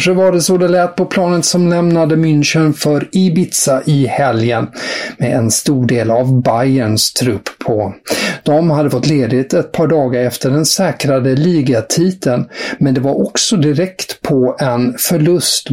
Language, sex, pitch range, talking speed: English, male, 125-155 Hz, 160 wpm